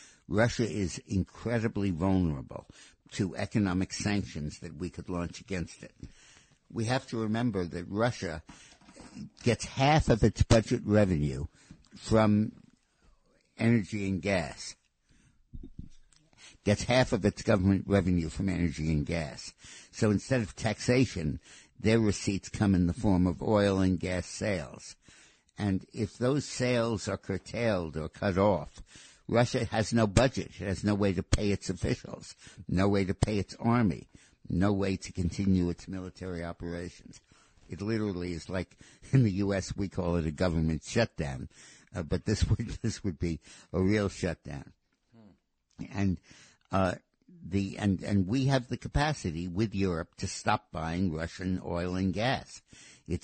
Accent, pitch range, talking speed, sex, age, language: American, 90-110 Hz, 150 wpm, male, 60-79, English